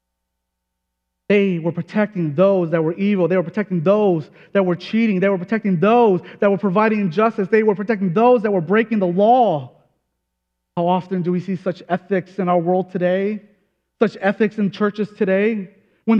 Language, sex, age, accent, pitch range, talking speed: English, male, 30-49, American, 160-210 Hz, 180 wpm